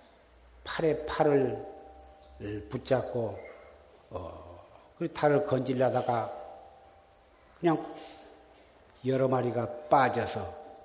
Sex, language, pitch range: male, Korean, 110-150 Hz